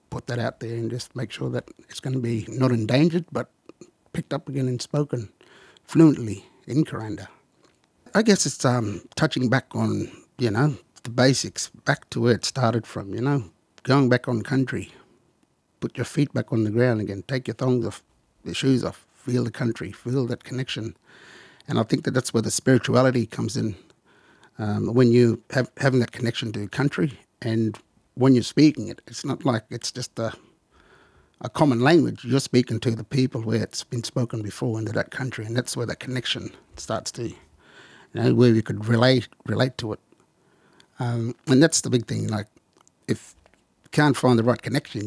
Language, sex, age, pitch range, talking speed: English, male, 60-79, 110-130 Hz, 190 wpm